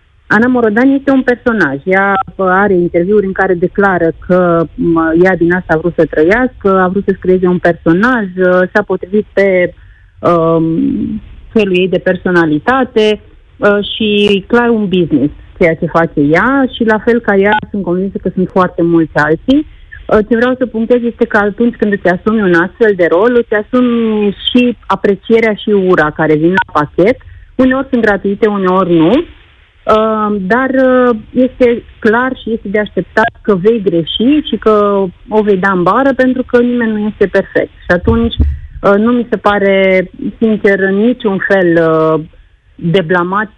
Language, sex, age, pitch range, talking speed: Romanian, female, 30-49, 175-225 Hz, 170 wpm